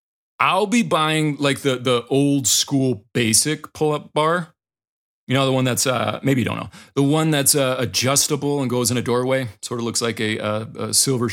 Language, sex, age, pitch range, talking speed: English, male, 40-59, 115-145 Hz, 205 wpm